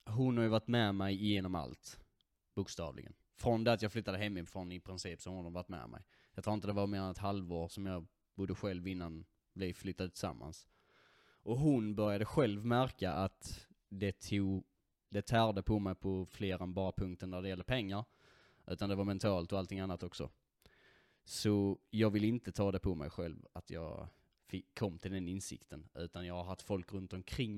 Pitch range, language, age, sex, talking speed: 90-105 Hz, Swedish, 20-39, male, 200 wpm